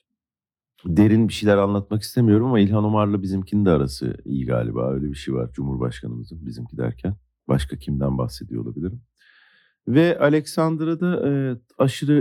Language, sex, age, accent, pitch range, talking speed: Turkish, male, 50-69, native, 75-110 Hz, 135 wpm